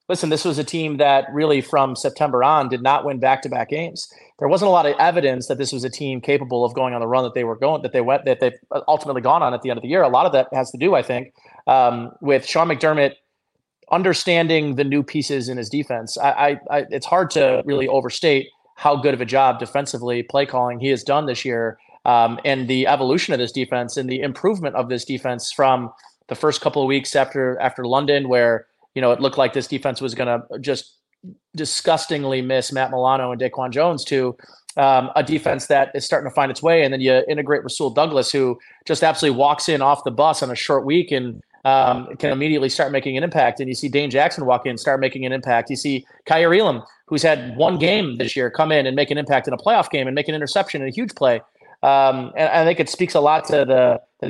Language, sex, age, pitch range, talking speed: English, male, 30-49, 130-150 Hz, 245 wpm